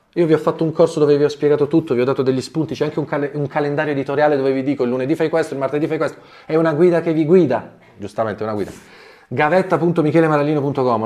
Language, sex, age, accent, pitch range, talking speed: Italian, male, 30-49, native, 120-160 Hz, 235 wpm